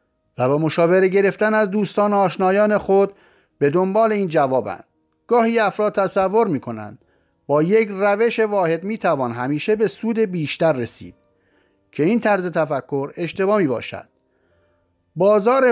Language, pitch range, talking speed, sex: Persian, 135-210 Hz, 135 wpm, male